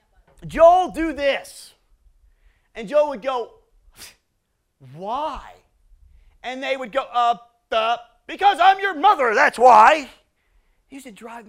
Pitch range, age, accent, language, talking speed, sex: 200-280 Hz, 30-49, American, English, 125 wpm, male